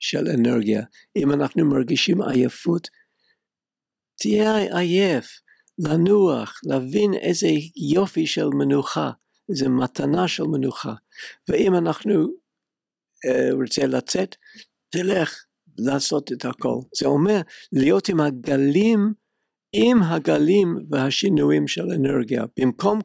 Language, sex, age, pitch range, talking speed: Hebrew, male, 60-79, 130-200 Hz, 100 wpm